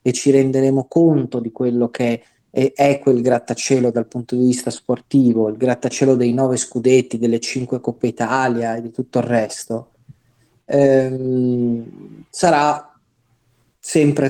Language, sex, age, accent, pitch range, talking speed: Italian, male, 30-49, native, 120-145 Hz, 135 wpm